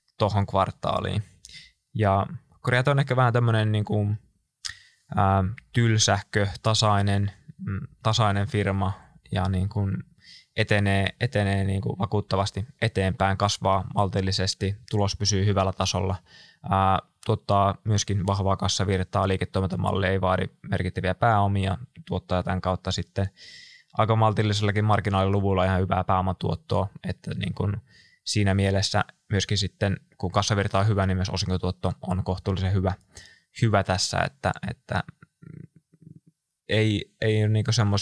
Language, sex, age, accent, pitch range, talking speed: Finnish, male, 20-39, native, 95-110 Hz, 115 wpm